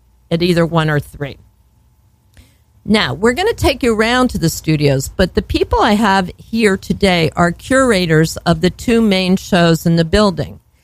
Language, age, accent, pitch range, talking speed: English, 50-69, American, 160-205 Hz, 175 wpm